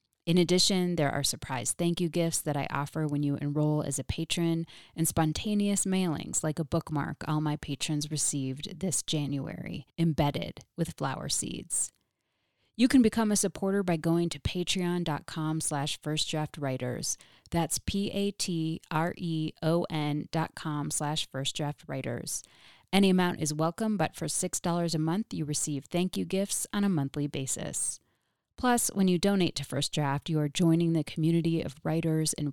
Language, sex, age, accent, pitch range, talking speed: English, female, 30-49, American, 150-175 Hz, 150 wpm